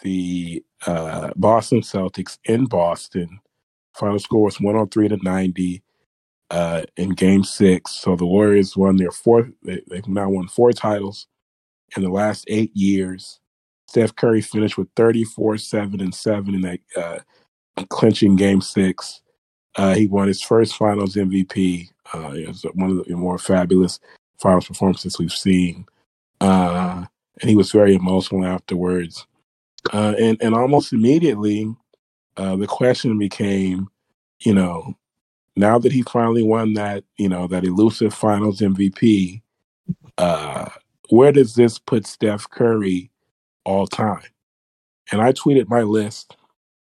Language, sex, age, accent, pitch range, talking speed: English, male, 30-49, American, 95-110 Hz, 140 wpm